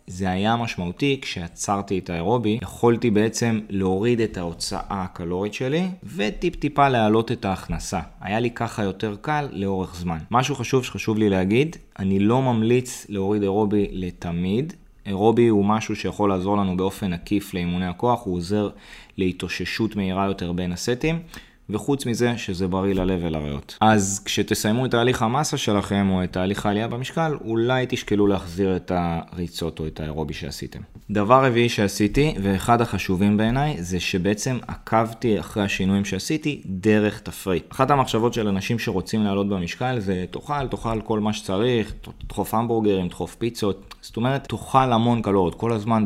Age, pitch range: 20-39, 95-115 Hz